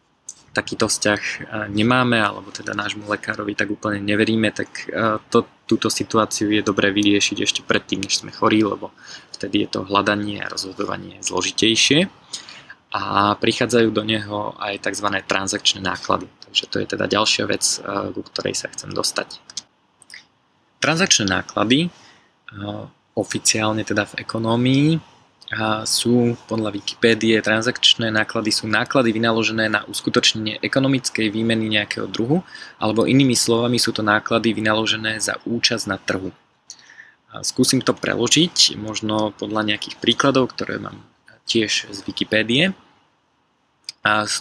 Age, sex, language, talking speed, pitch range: 20-39, male, Slovak, 130 wpm, 105-120 Hz